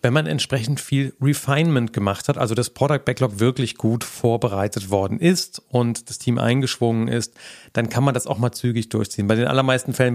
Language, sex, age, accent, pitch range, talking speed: German, male, 40-59, German, 120-145 Hz, 195 wpm